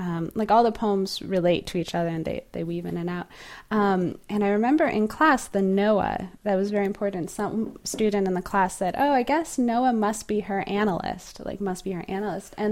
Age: 20-39